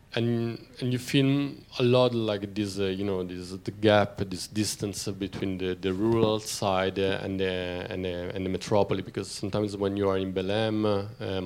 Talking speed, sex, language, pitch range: 200 wpm, male, French, 95-110 Hz